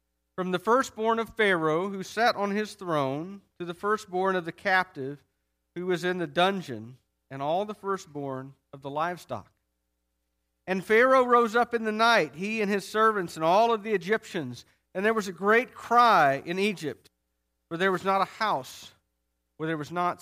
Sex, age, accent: male, 40-59, American